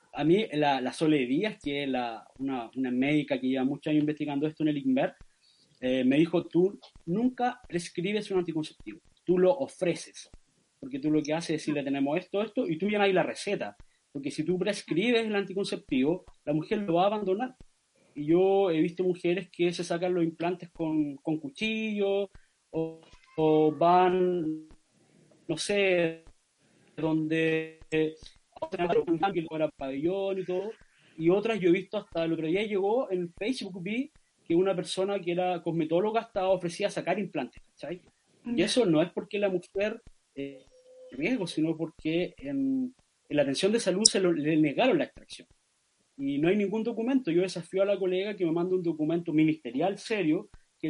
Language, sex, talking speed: Spanish, male, 175 wpm